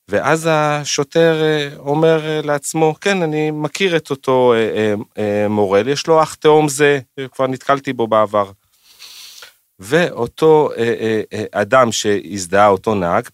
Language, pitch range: Hebrew, 115-160 Hz